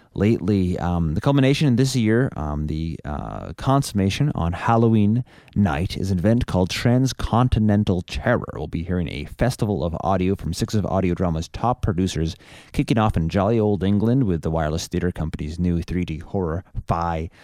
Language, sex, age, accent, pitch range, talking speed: English, male, 30-49, American, 85-110 Hz, 170 wpm